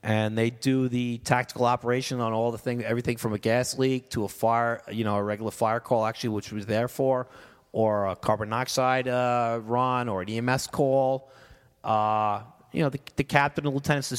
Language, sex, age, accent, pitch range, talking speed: English, male, 30-49, American, 110-135 Hz, 205 wpm